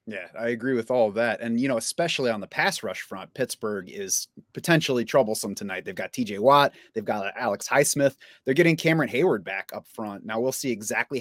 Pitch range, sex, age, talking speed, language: 115-145 Hz, male, 30-49, 215 wpm, English